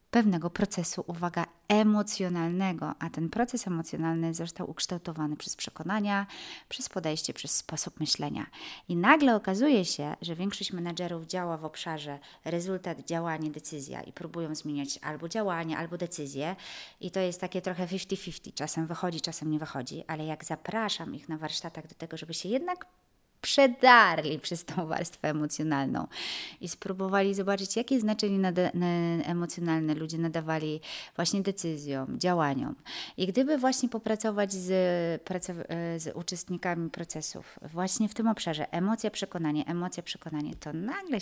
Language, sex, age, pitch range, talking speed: Polish, female, 30-49, 160-195 Hz, 135 wpm